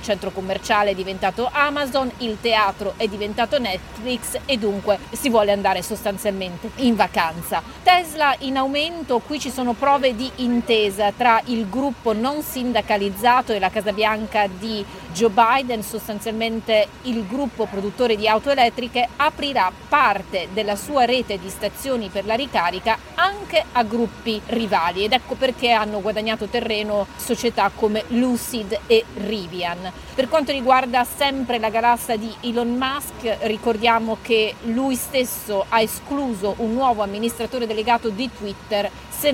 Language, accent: Italian, native